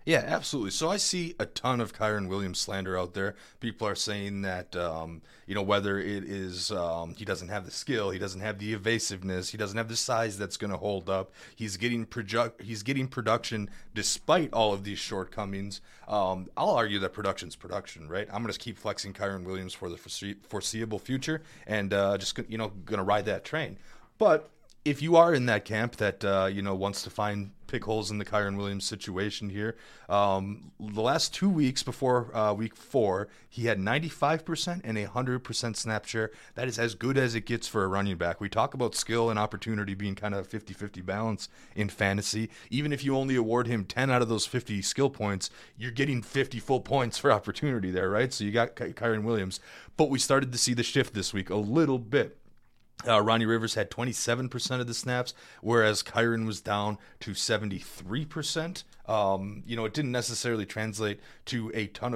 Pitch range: 100-125 Hz